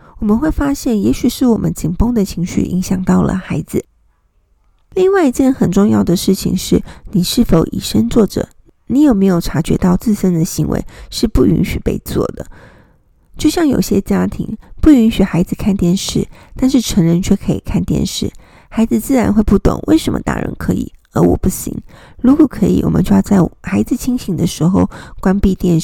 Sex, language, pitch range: female, Chinese, 180-245 Hz